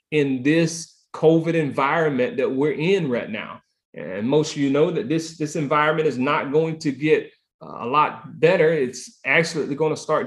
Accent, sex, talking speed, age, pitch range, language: American, male, 175 wpm, 30-49, 140-175 Hz, English